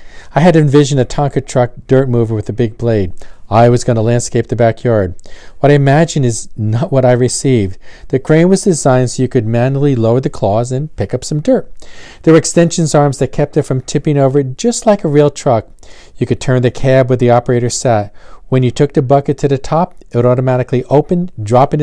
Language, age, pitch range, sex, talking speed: English, 40-59, 115-140 Hz, male, 220 wpm